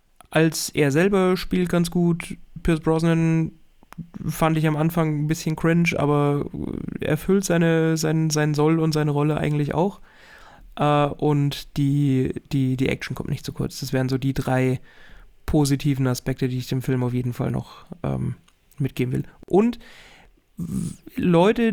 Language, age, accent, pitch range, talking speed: German, 30-49, German, 135-170 Hz, 150 wpm